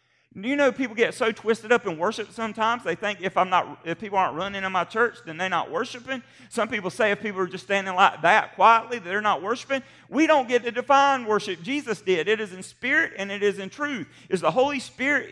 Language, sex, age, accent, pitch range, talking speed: English, male, 40-59, American, 165-230 Hz, 245 wpm